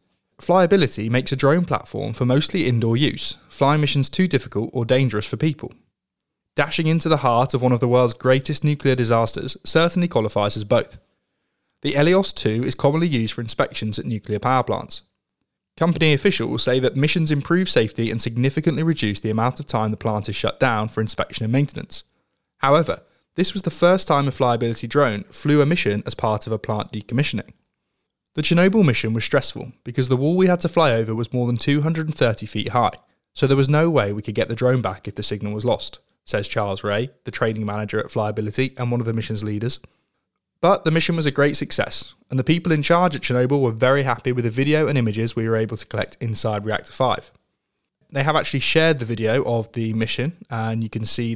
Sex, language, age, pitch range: male, English, 20-39, 110-150 Hz